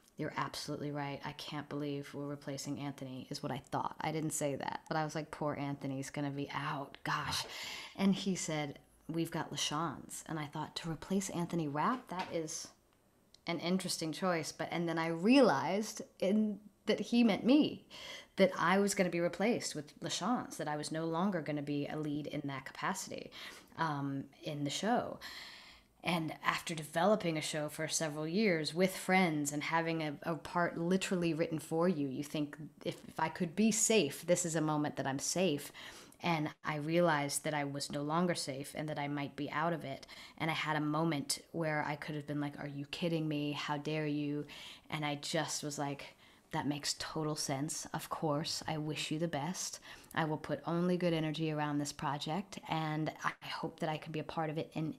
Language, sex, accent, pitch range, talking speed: English, female, American, 145-170 Hz, 205 wpm